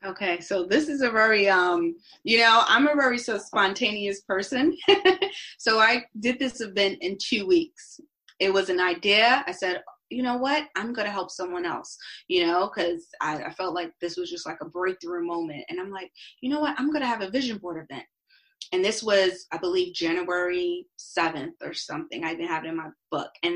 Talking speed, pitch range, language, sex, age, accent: 210 wpm, 175-240 Hz, English, female, 20-39, American